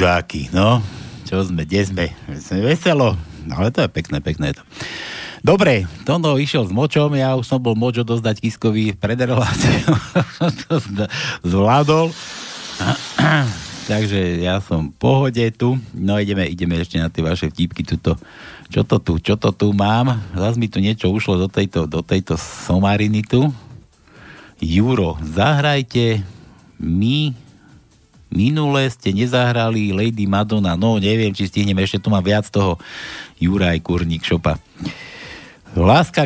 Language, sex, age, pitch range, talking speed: Slovak, male, 60-79, 95-145 Hz, 135 wpm